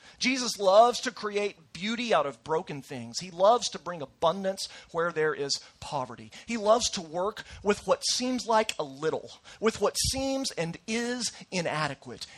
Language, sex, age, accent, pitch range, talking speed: English, male, 40-59, American, 160-240 Hz, 165 wpm